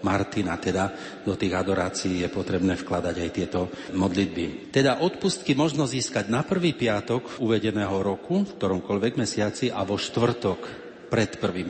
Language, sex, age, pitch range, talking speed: Slovak, male, 40-59, 100-135 Hz, 145 wpm